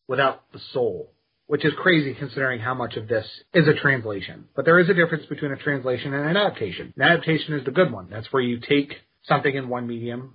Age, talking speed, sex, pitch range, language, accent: 30-49, 225 wpm, male, 120-150 Hz, English, American